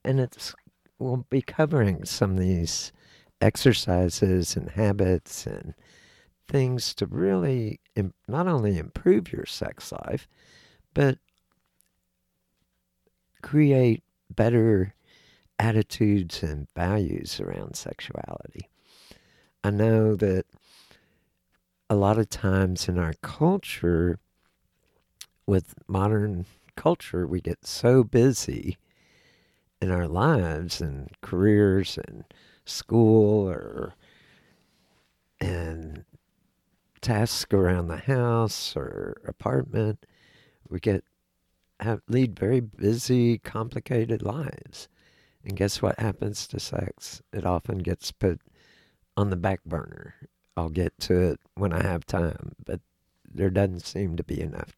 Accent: American